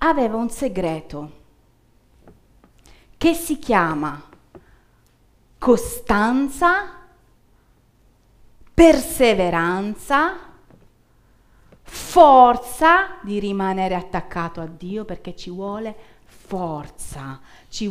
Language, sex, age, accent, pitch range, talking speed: Italian, female, 40-59, native, 175-255 Hz, 65 wpm